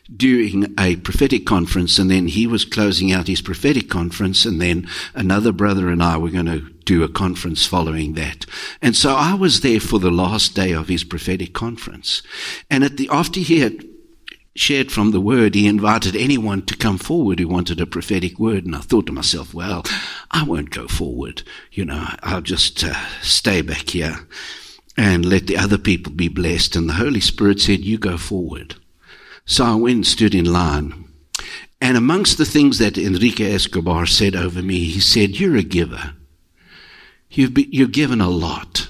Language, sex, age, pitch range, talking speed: English, male, 60-79, 85-110 Hz, 190 wpm